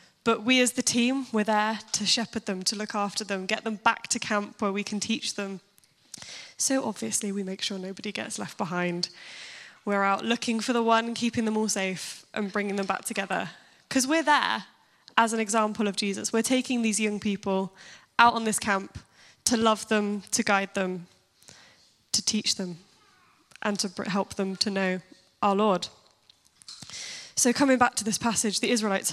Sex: female